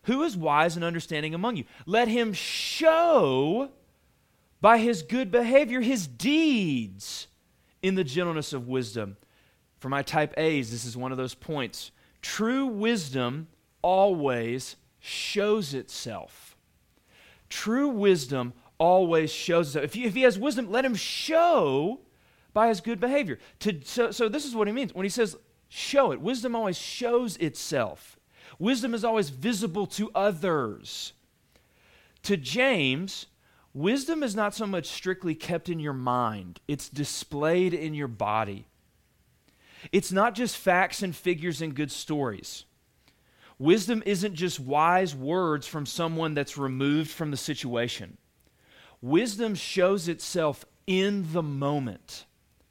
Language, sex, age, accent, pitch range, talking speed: English, male, 30-49, American, 140-225 Hz, 135 wpm